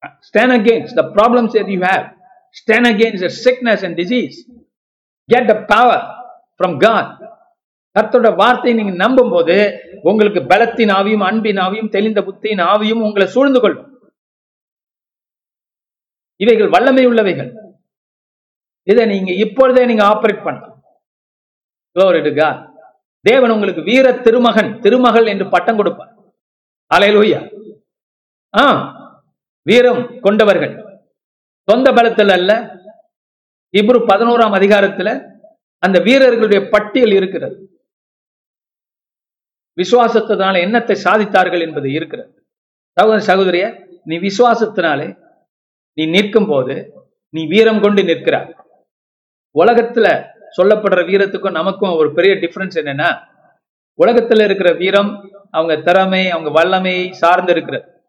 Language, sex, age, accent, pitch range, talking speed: Tamil, male, 50-69, native, 185-235 Hz, 120 wpm